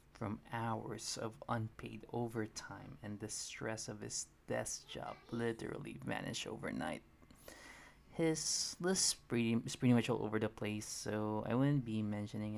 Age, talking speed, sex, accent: 20-39, 140 wpm, male, native